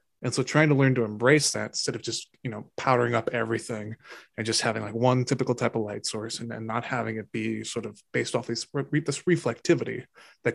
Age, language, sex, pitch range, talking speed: 20-39, English, male, 115-130 Hz, 235 wpm